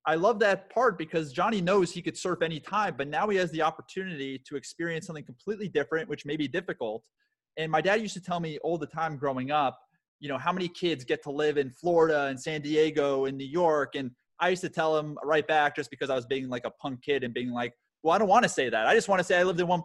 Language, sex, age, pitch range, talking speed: English, male, 30-49, 135-165 Hz, 270 wpm